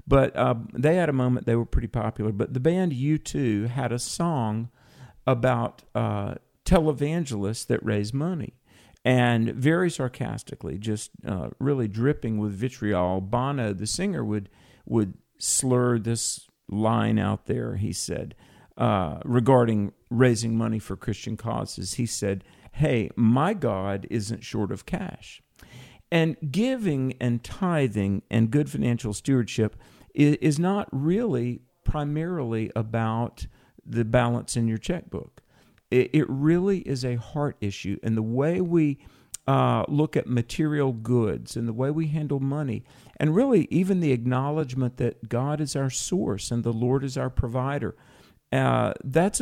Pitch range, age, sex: 115-150 Hz, 50-69, male